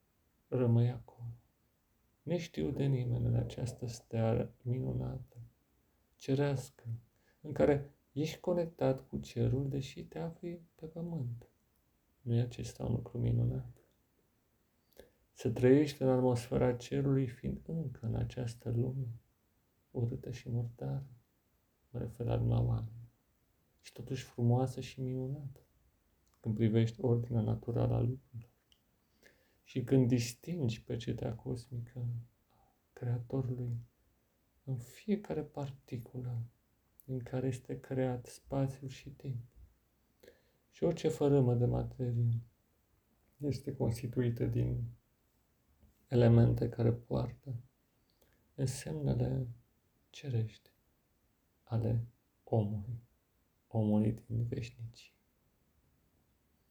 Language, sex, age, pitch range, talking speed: Romanian, male, 40-59, 115-130 Hz, 95 wpm